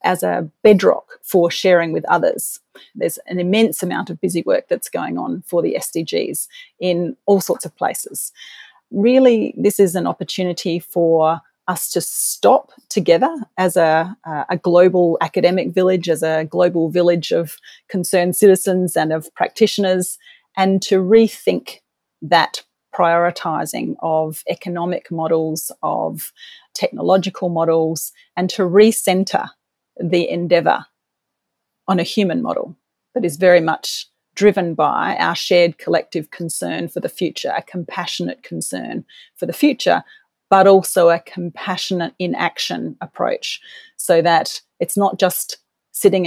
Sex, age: female, 40-59